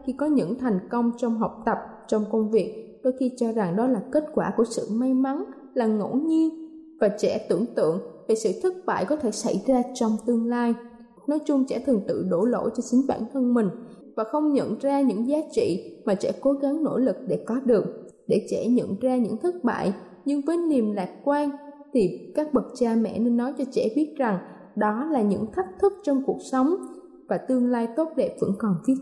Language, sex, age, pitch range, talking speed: Vietnamese, female, 20-39, 220-290 Hz, 225 wpm